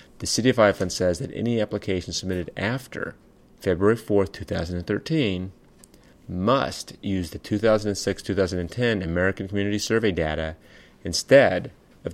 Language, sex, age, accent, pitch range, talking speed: English, male, 30-49, American, 90-105 Hz, 110 wpm